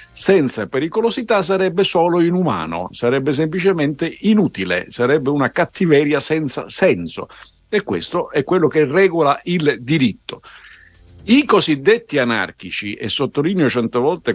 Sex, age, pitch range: male, 50-69, 110-180 Hz